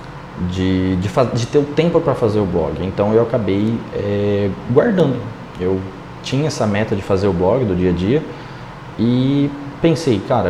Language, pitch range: Portuguese, 105-145 Hz